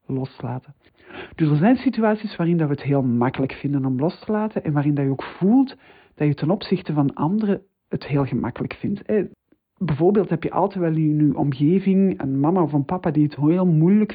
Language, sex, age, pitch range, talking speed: Dutch, male, 50-69, 140-195 Hz, 205 wpm